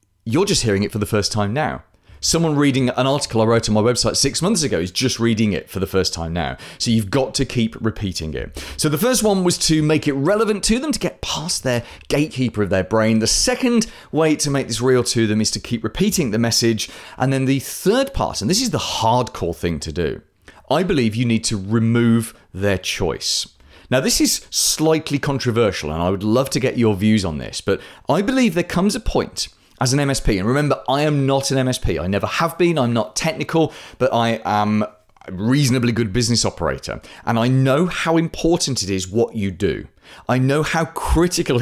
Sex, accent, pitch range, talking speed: male, British, 105-155 Hz, 220 wpm